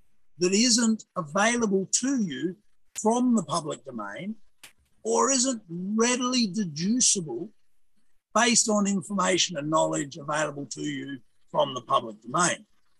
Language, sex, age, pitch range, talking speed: English, male, 50-69, 175-230 Hz, 115 wpm